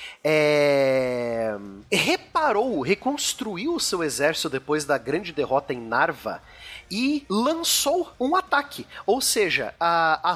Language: Portuguese